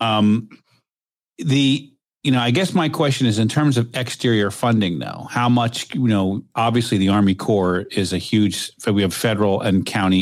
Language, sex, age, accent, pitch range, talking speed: English, male, 40-59, American, 100-120 Hz, 180 wpm